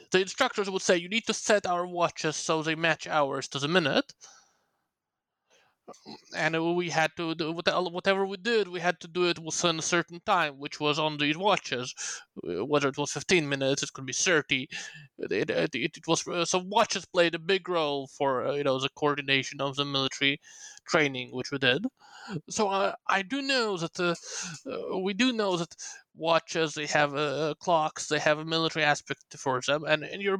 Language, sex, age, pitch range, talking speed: English, male, 20-39, 145-180 Hz, 180 wpm